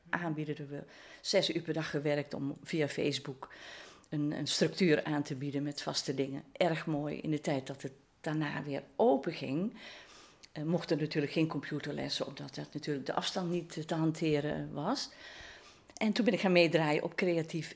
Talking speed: 170 wpm